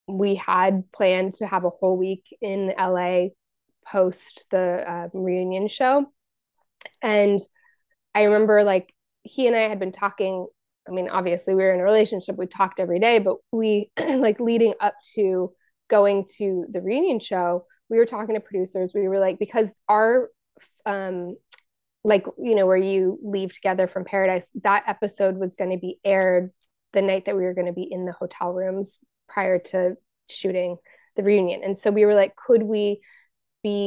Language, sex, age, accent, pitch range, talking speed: English, female, 20-39, American, 185-215 Hz, 175 wpm